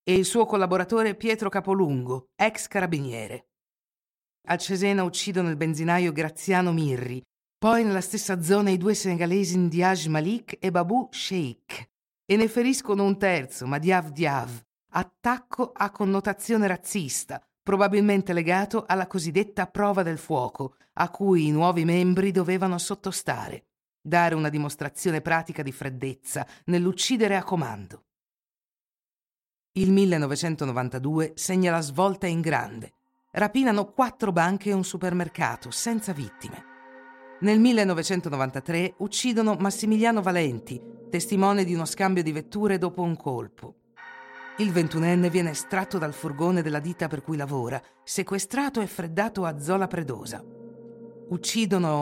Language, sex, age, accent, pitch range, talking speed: Italian, female, 50-69, native, 155-200 Hz, 125 wpm